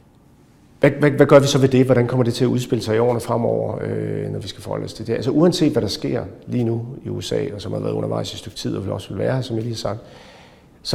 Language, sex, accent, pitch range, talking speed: Danish, male, native, 105-125 Hz, 295 wpm